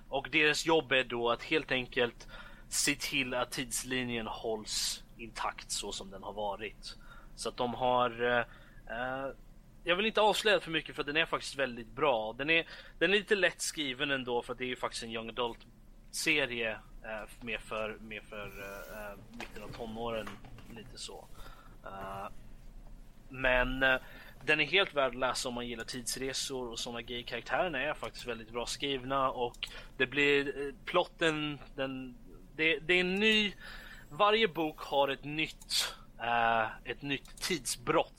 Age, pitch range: 30-49, 115-145 Hz